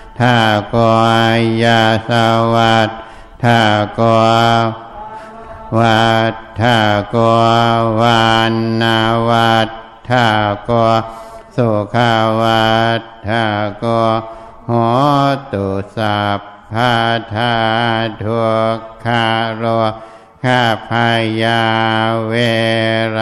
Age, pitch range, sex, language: 60-79, 110-115 Hz, male, Thai